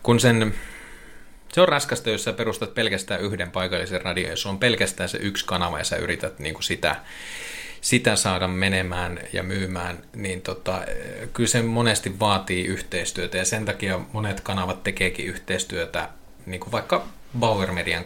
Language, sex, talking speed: Finnish, male, 150 wpm